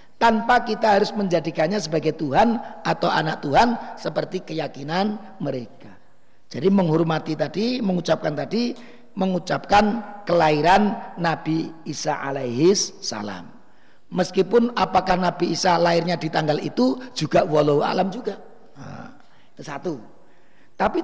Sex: male